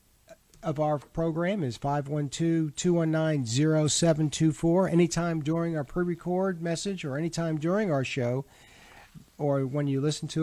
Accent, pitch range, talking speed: American, 135-160 Hz, 115 wpm